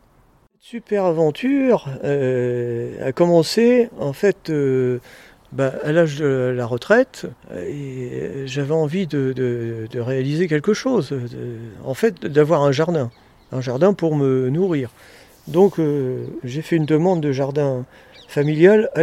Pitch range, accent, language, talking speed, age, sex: 130-175 Hz, French, French, 140 wpm, 50-69, male